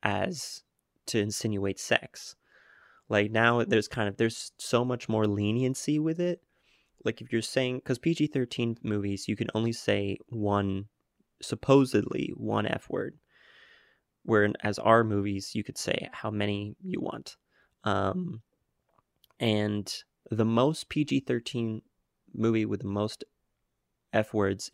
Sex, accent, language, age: male, American, English, 20-39